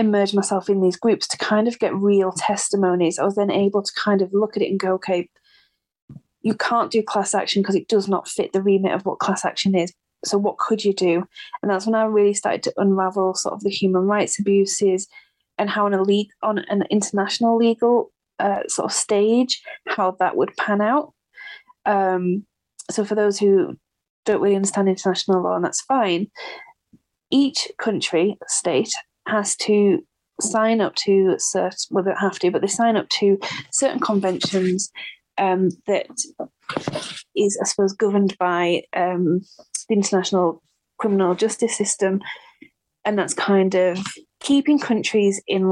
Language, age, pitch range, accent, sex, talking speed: English, 20-39, 190-215 Hz, British, female, 170 wpm